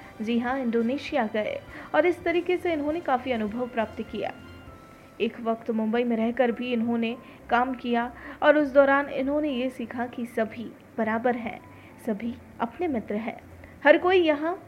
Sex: female